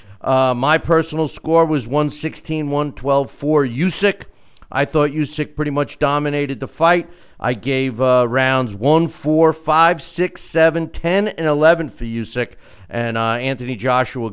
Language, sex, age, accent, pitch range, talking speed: English, male, 50-69, American, 125-165 Hz, 140 wpm